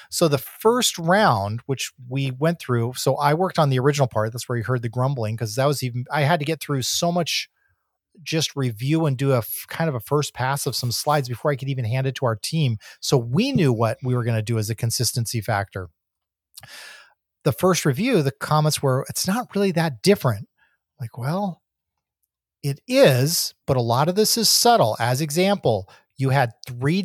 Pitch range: 120-150 Hz